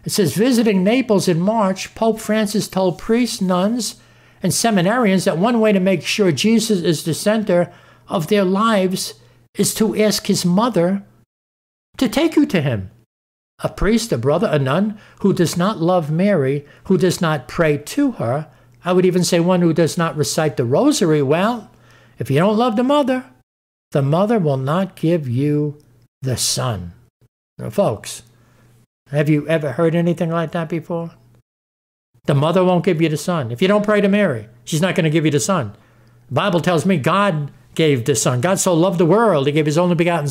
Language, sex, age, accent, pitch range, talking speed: English, male, 60-79, American, 145-195 Hz, 190 wpm